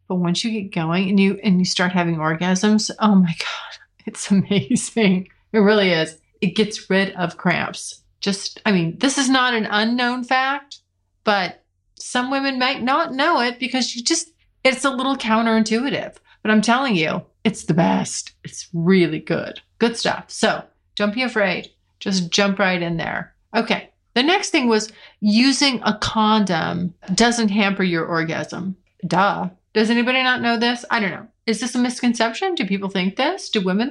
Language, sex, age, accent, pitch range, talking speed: English, female, 30-49, American, 180-245 Hz, 175 wpm